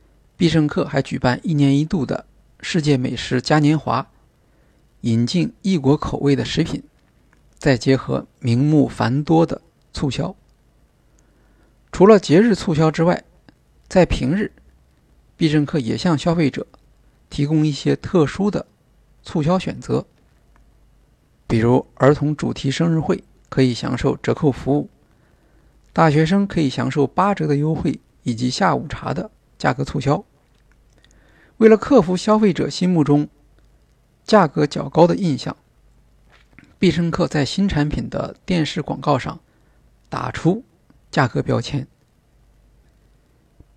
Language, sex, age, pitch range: Chinese, male, 50-69, 135-175 Hz